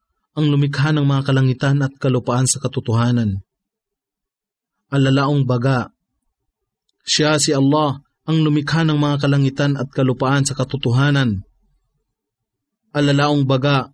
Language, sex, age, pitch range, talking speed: English, male, 20-39, 125-150 Hz, 110 wpm